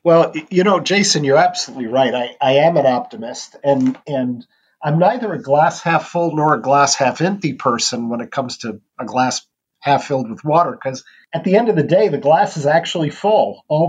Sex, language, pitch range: male, English, 130-170 Hz